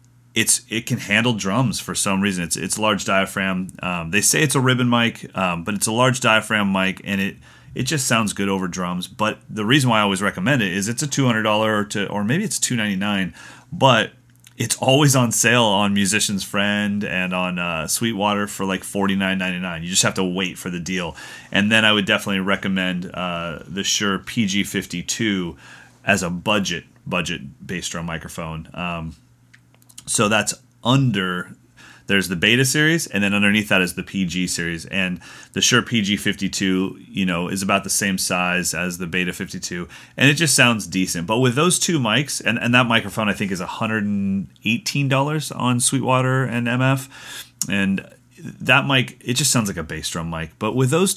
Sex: male